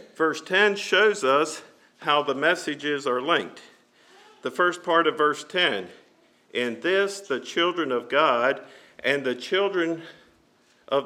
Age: 50-69